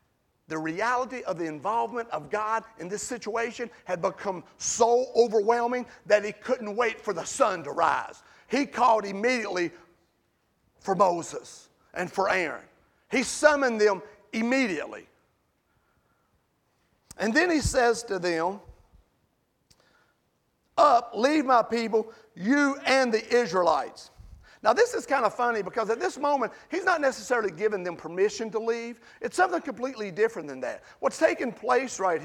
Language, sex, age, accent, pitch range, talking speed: English, male, 40-59, American, 210-280 Hz, 145 wpm